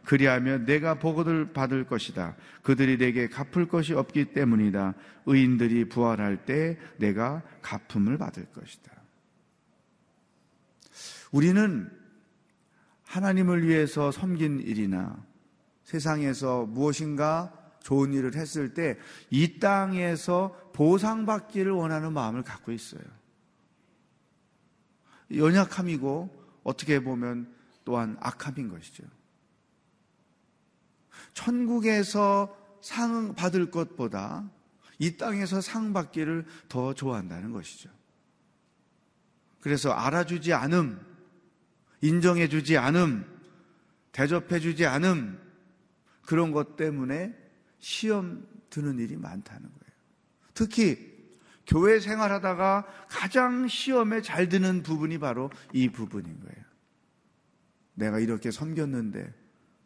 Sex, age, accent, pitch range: male, 40-59, native, 135-190 Hz